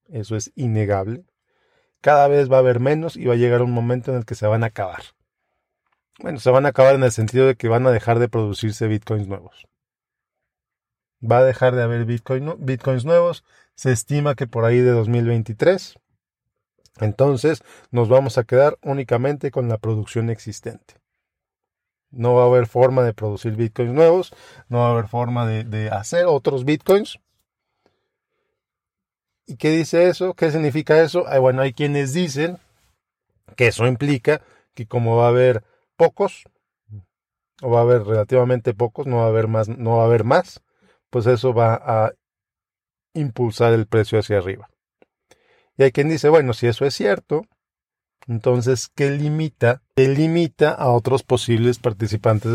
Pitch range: 115-140 Hz